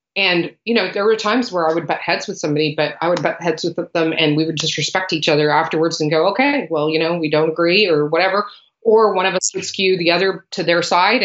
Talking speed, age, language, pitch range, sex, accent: 265 wpm, 30-49, English, 155-190 Hz, female, American